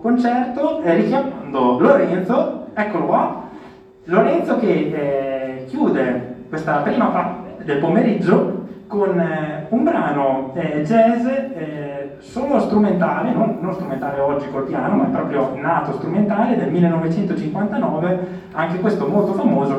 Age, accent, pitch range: 20-39, native, 145-210 Hz